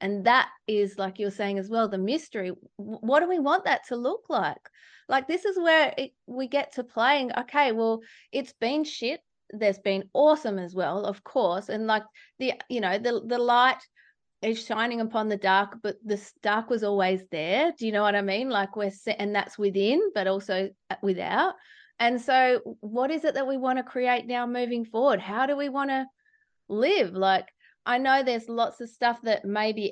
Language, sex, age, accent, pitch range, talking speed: English, female, 30-49, Australian, 195-250 Hz, 205 wpm